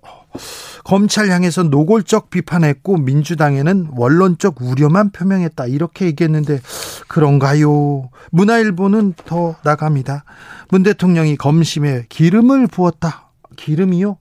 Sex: male